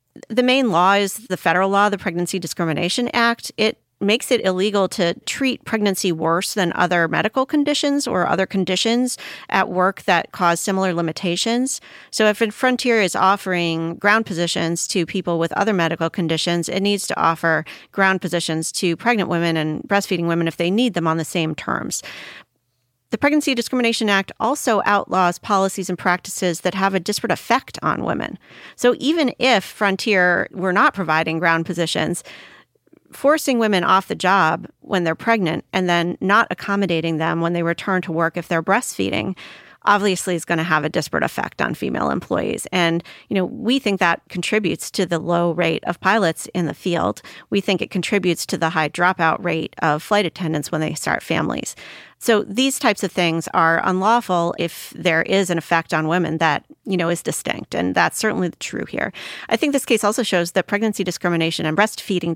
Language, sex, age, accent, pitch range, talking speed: English, female, 40-59, American, 170-210 Hz, 185 wpm